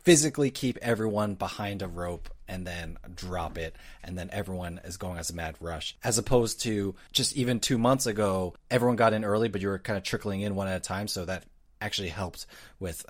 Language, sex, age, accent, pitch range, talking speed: English, male, 30-49, American, 95-130 Hz, 215 wpm